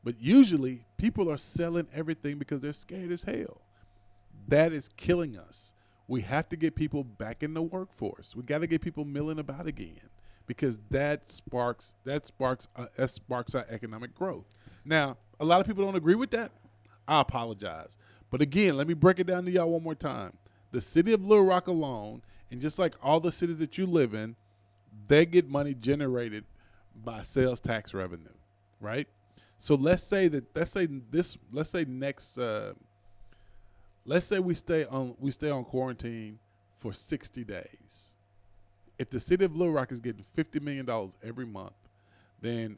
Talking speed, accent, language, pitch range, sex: 180 wpm, American, English, 105-155 Hz, male